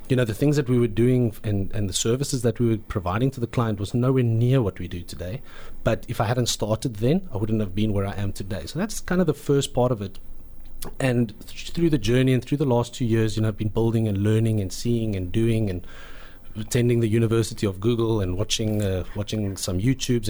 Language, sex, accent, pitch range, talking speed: English, male, South African, 100-125 Hz, 240 wpm